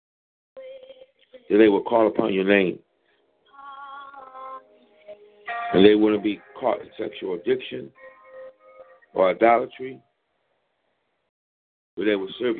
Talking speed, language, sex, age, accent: 100 wpm, English, male, 50-69, American